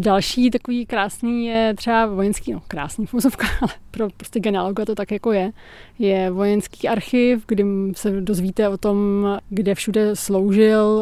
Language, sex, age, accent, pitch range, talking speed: Czech, female, 20-39, native, 195-215 Hz, 145 wpm